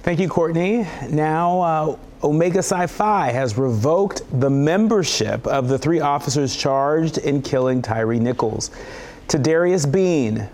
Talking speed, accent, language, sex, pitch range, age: 130 wpm, American, English, male, 125-160 Hz, 40-59